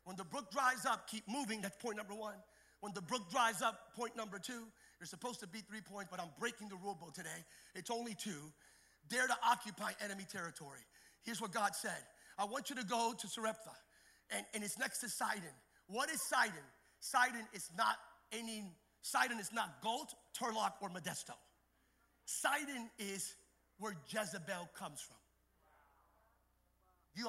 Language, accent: English, American